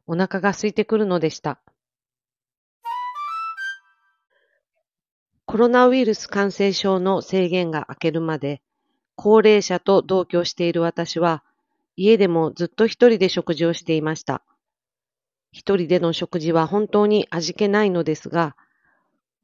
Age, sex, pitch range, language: 40-59, female, 165-215 Hz, Japanese